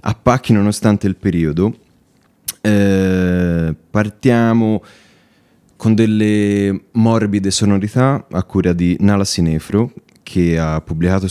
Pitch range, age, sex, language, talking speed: 85-110 Hz, 30-49, male, Italian, 100 wpm